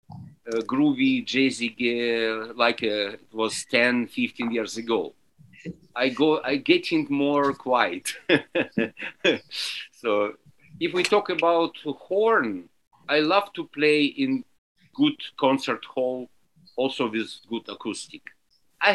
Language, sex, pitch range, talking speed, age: English, male, 120-160 Hz, 120 wpm, 50-69